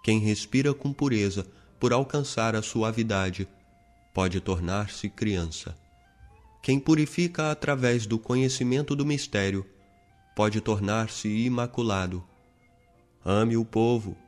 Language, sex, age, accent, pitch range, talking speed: Portuguese, male, 20-39, Brazilian, 100-125 Hz, 100 wpm